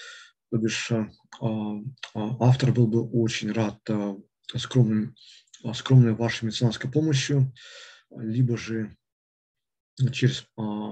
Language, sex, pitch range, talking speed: Russian, male, 115-130 Hz, 80 wpm